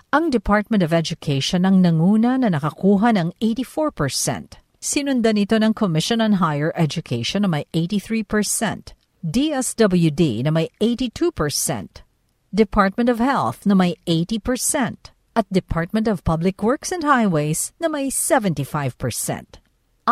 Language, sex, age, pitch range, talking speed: Filipino, female, 50-69, 165-235 Hz, 120 wpm